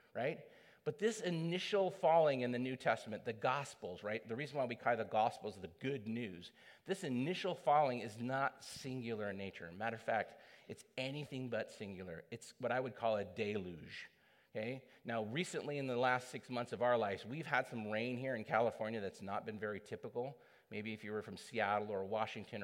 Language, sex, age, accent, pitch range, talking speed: English, male, 40-59, American, 115-145 Hz, 200 wpm